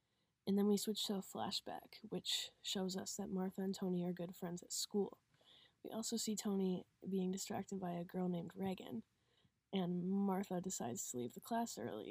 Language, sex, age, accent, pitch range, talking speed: English, female, 20-39, American, 185-205 Hz, 190 wpm